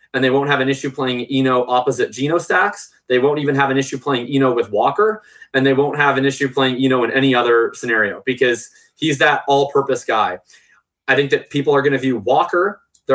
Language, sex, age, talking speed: English, male, 20-39, 220 wpm